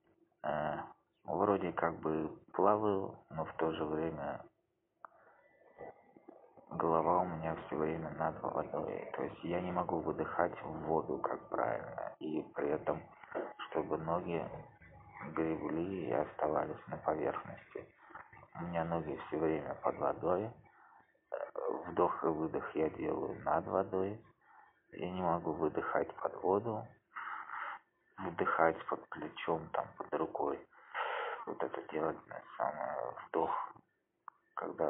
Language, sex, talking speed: Russian, male, 115 wpm